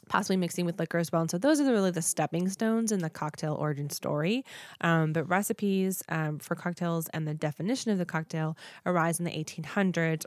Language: English